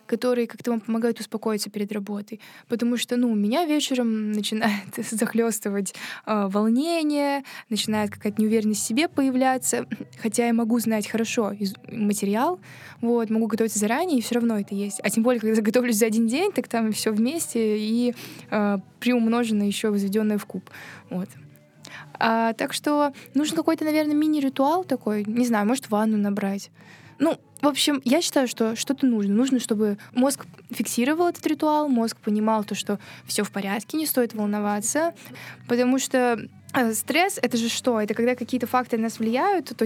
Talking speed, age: 165 wpm, 20-39